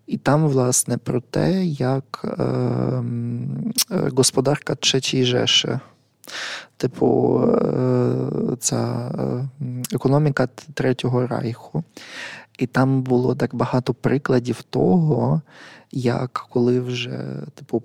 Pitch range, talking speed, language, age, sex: 120-150 Hz, 85 wpm, Ukrainian, 20-39, male